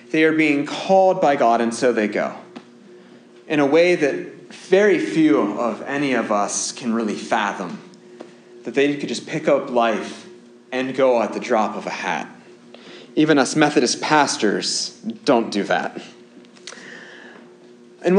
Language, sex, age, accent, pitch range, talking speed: English, male, 30-49, American, 120-175 Hz, 150 wpm